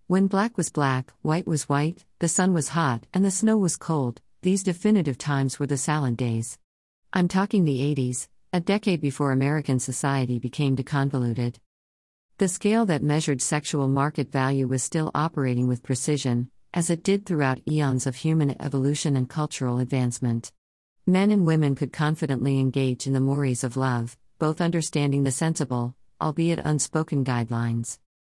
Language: English